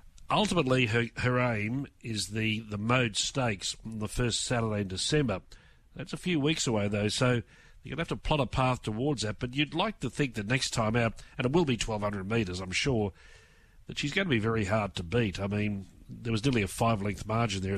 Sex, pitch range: male, 105-130 Hz